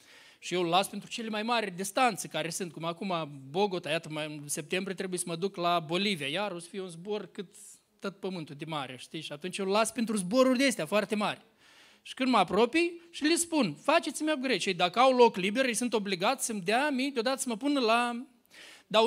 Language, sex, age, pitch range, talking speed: Romanian, male, 20-39, 190-255 Hz, 225 wpm